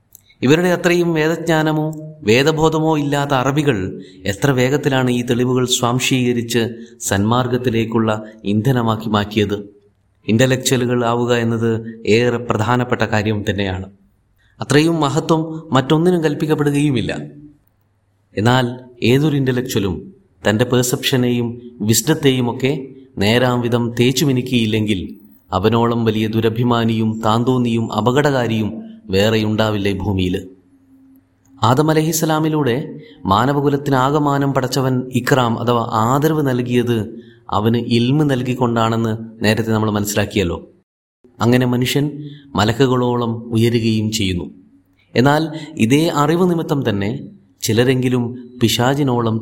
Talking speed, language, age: 85 wpm, Malayalam, 30-49